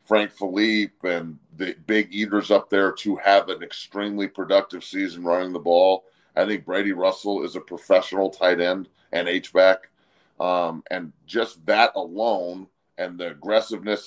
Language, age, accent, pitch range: English, 40-59, American, 95-110 Hz